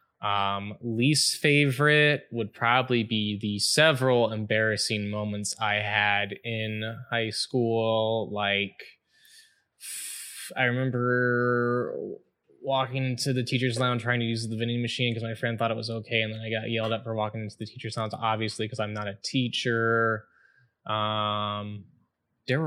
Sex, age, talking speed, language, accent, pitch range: male, 10-29, 150 wpm, English, American, 105-115 Hz